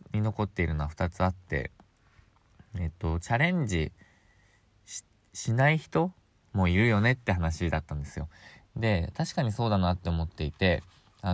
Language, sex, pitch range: Japanese, male, 85-110 Hz